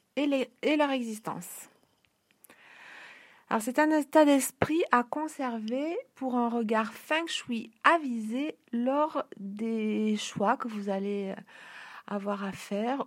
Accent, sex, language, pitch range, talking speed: French, female, French, 205-255 Hz, 125 wpm